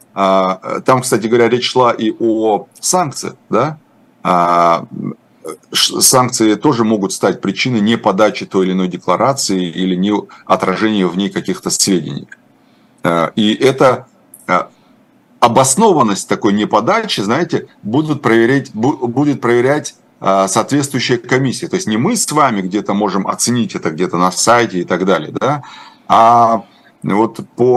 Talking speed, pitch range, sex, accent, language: 130 wpm, 95-125 Hz, male, native, Russian